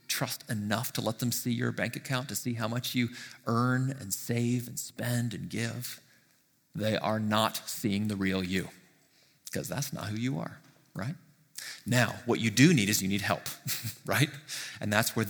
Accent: American